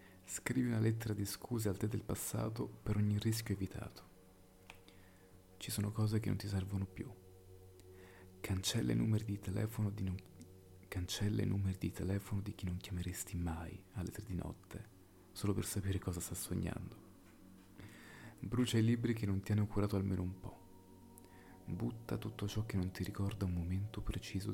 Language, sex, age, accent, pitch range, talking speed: Italian, male, 30-49, native, 95-105 Hz, 165 wpm